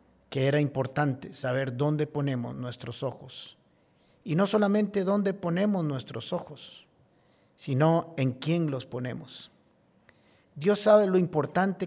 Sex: male